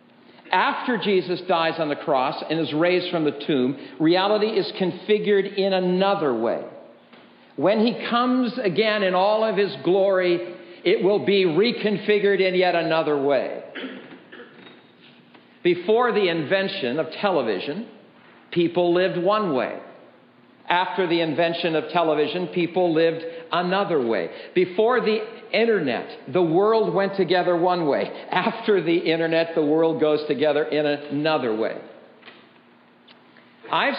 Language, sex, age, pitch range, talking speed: English, male, 50-69, 165-210 Hz, 130 wpm